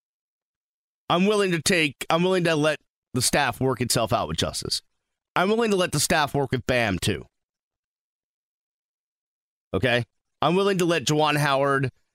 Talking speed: 160 wpm